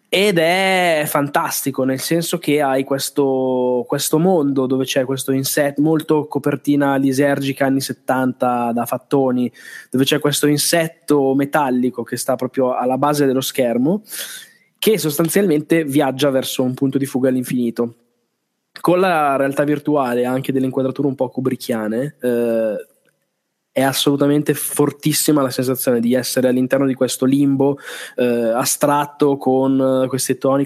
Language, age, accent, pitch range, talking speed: Italian, 20-39, native, 130-155 Hz, 135 wpm